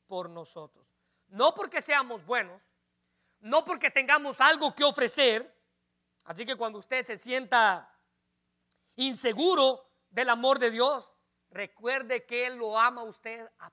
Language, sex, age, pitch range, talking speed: Spanish, male, 40-59, 175-275 Hz, 135 wpm